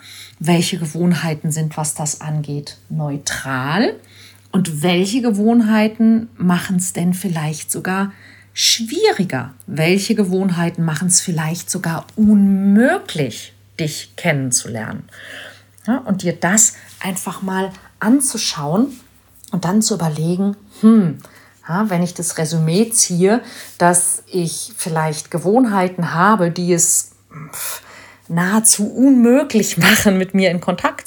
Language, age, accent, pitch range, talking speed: German, 40-59, German, 155-210 Hz, 105 wpm